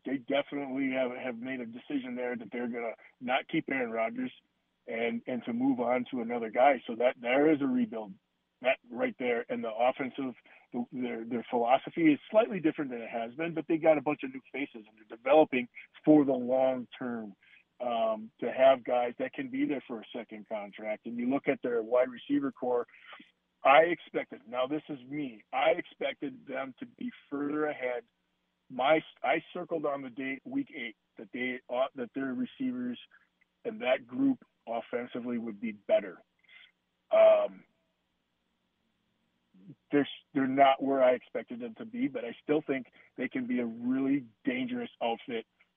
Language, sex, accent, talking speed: English, male, American, 180 wpm